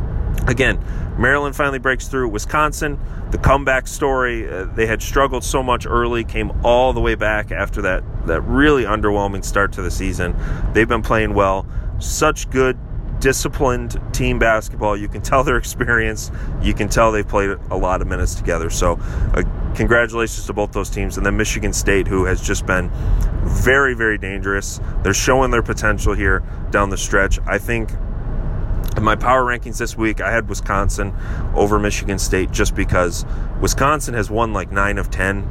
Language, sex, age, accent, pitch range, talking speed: English, male, 30-49, American, 95-115 Hz, 175 wpm